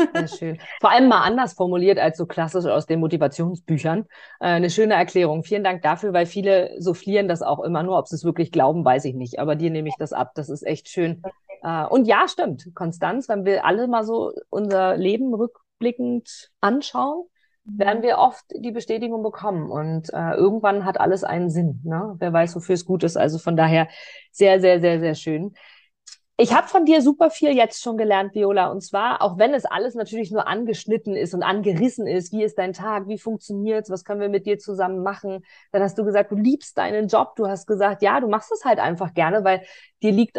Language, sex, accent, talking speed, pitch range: German, female, German, 210 wpm, 180-225 Hz